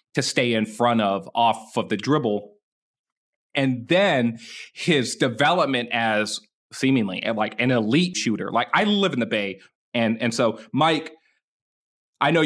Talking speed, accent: 150 wpm, American